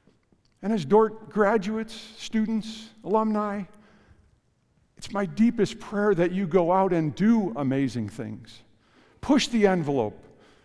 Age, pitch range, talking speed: 50-69, 145-210 Hz, 120 wpm